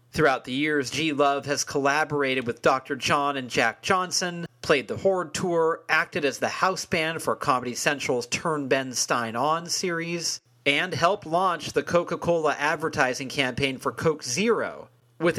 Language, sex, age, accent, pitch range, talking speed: English, male, 40-59, American, 130-170 Hz, 160 wpm